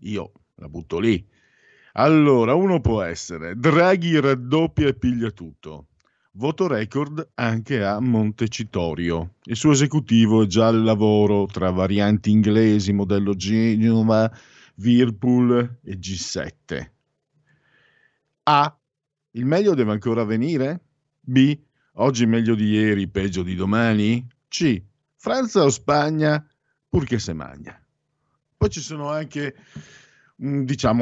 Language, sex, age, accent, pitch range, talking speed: Italian, male, 50-69, native, 110-155 Hz, 115 wpm